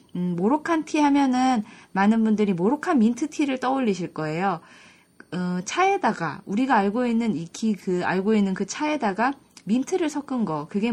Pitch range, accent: 190-270 Hz, native